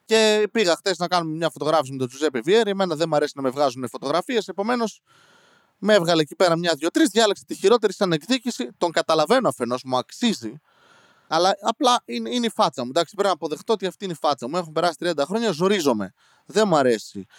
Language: Greek